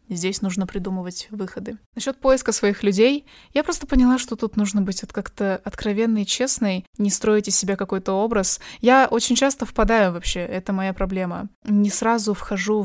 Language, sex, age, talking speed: Russian, female, 20-39, 170 wpm